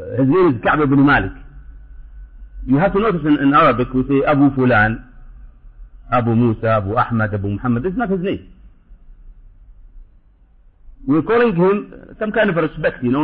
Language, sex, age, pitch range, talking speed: English, male, 50-69, 120-160 Hz, 165 wpm